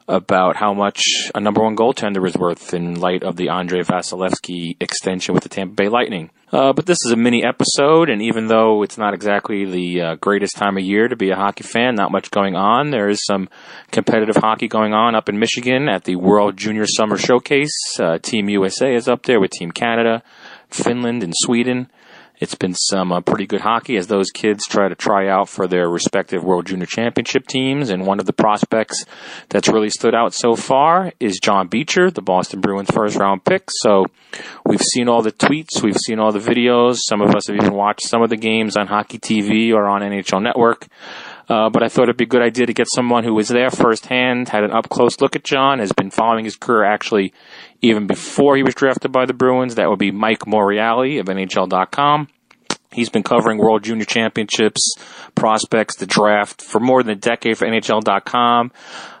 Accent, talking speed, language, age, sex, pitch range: American, 205 wpm, English, 30-49, male, 100-120 Hz